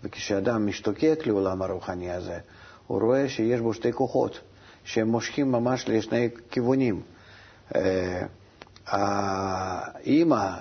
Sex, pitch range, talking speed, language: male, 100-115 Hz, 95 wpm, Hebrew